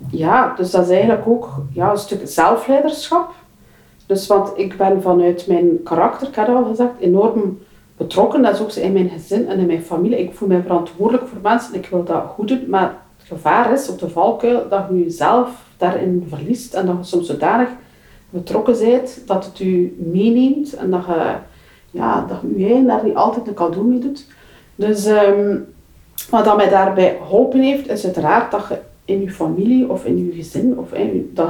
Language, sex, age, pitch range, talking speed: Dutch, female, 40-59, 180-240 Hz, 195 wpm